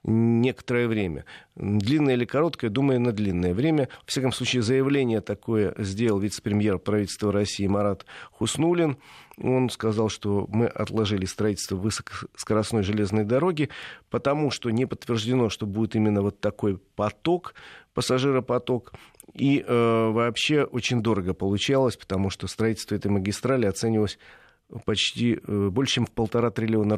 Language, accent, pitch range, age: Russian, native, 105-125 Hz, 40-59